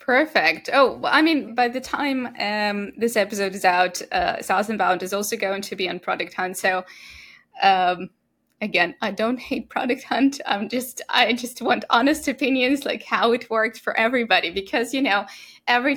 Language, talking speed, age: English, 185 wpm, 10-29